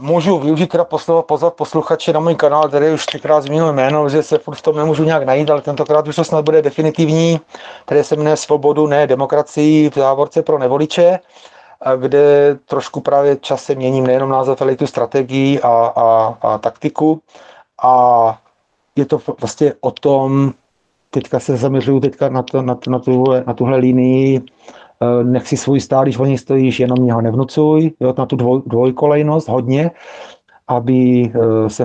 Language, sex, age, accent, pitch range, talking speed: Czech, male, 30-49, native, 130-155 Hz, 170 wpm